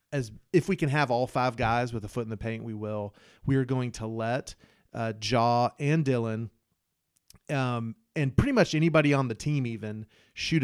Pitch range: 115-140 Hz